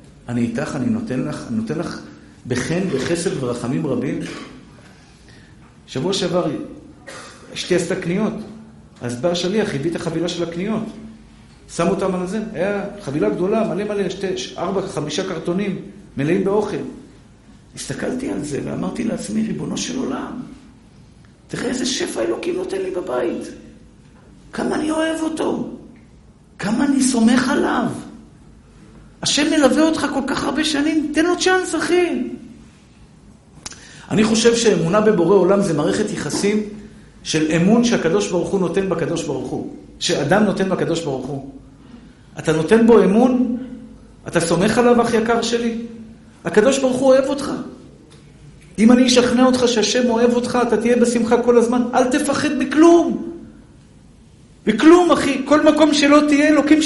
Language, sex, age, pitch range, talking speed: Hebrew, male, 50-69, 185-270 Hz, 140 wpm